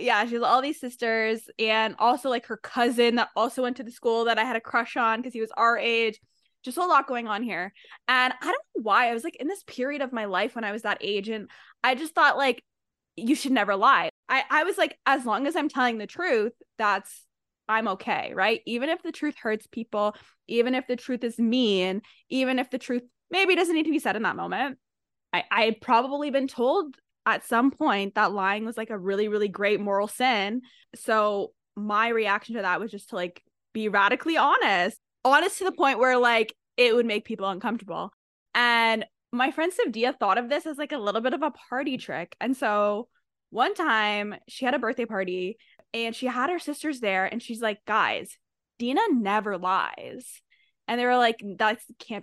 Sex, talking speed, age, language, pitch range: female, 215 wpm, 20-39, English, 210-265 Hz